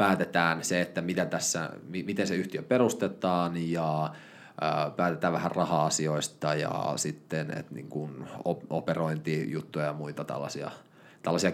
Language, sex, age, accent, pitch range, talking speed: Finnish, male, 30-49, native, 80-90 Hz, 120 wpm